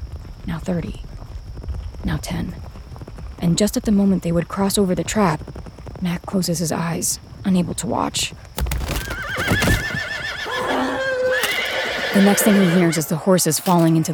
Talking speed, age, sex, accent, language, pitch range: 135 wpm, 30-49, female, American, English, 165-195 Hz